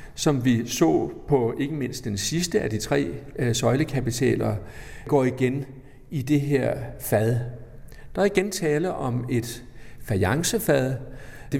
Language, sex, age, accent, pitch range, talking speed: Danish, male, 60-79, native, 115-150 Hz, 135 wpm